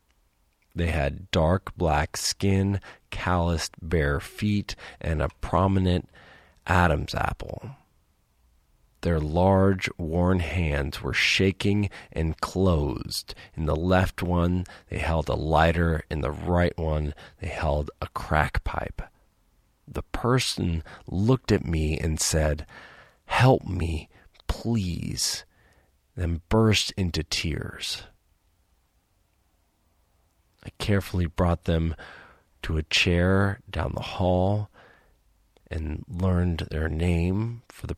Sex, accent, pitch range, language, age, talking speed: male, American, 80-95 Hz, English, 40-59, 105 wpm